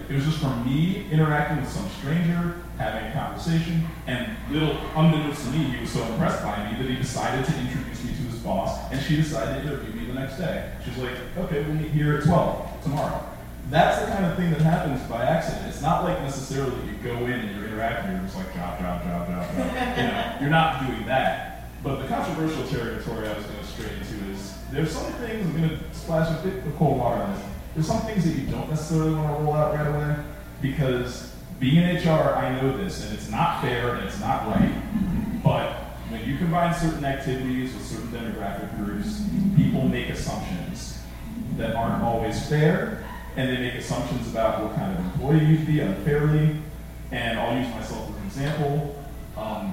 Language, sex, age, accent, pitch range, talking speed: English, male, 30-49, American, 120-160 Hz, 210 wpm